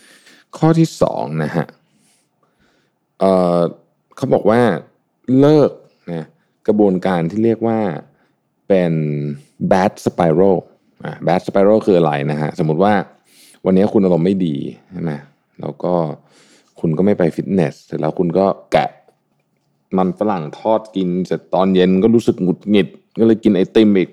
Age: 20-39